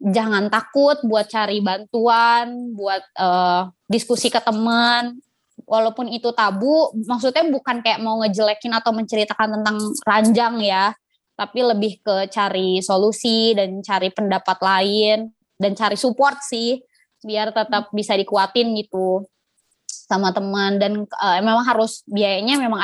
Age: 20-39